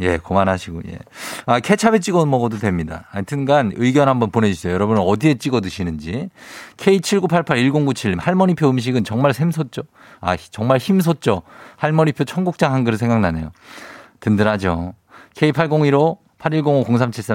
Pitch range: 100-150 Hz